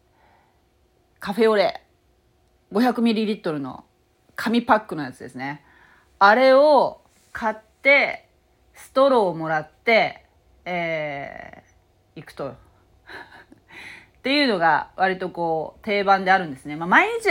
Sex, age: female, 30-49